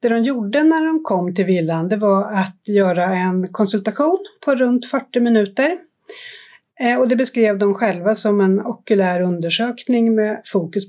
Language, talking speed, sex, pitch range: Swedish, 160 wpm, female, 185-255 Hz